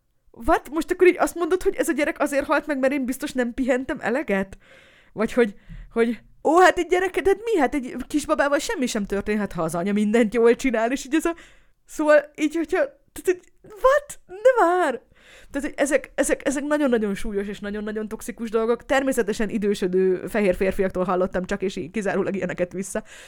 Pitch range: 185-270 Hz